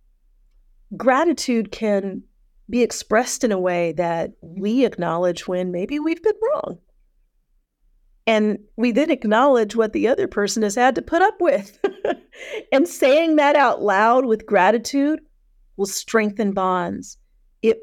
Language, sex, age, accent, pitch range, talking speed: English, female, 40-59, American, 180-230 Hz, 135 wpm